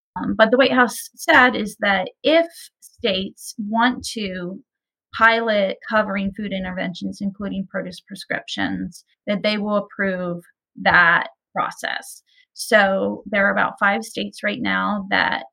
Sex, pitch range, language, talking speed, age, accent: female, 190-230 Hz, English, 130 wpm, 20-39, American